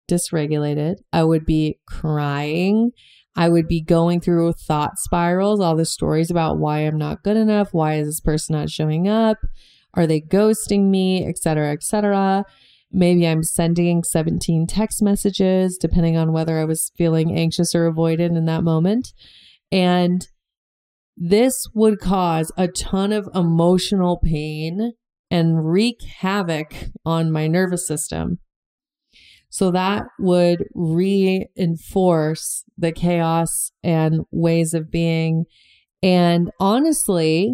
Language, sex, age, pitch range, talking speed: English, female, 30-49, 160-195 Hz, 130 wpm